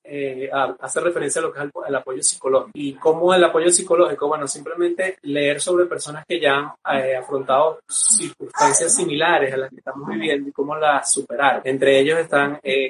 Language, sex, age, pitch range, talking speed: Spanish, male, 30-49, 140-180 Hz, 195 wpm